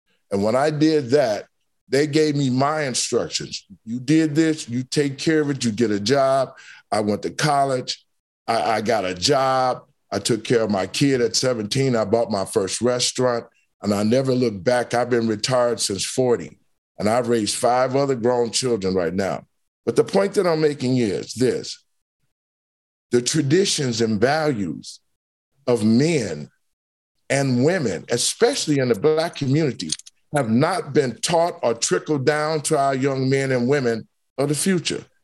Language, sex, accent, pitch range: English, male, American, 125-170 Hz